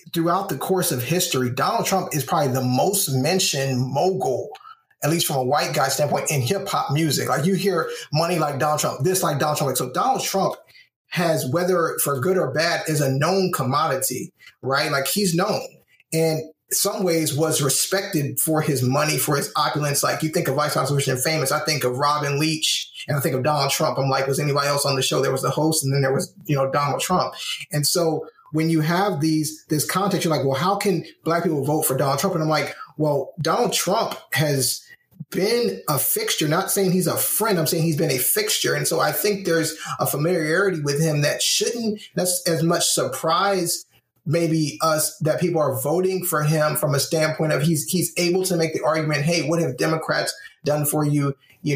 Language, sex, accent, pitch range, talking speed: English, male, American, 145-175 Hz, 215 wpm